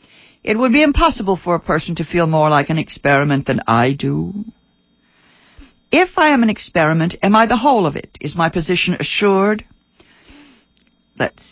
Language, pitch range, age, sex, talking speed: English, 160-205 Hz, 60-79, female, 165 wpm